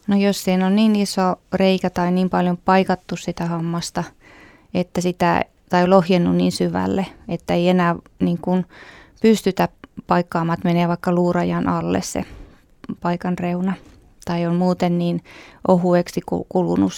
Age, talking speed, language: 20-39, 125 wpm, Finnish